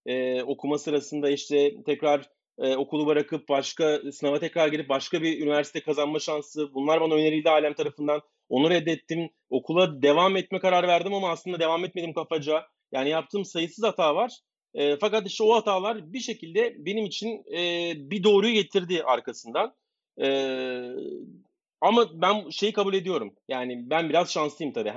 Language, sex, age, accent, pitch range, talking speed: Turkish, male, 30-49, native, 145-180 Hz, 155 wpm